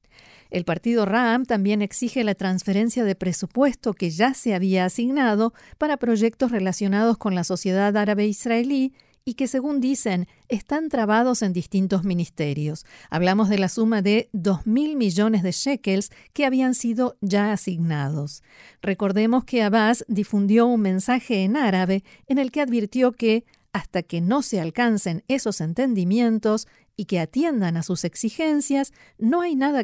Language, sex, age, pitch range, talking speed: Spanish, female, 50-69, 185-240 Hz, 150 wpm